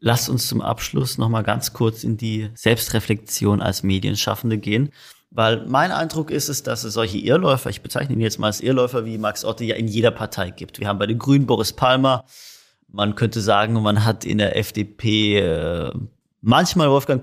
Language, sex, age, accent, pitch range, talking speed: German, male, 30-49, German, 110-135 Hz, 190 wpm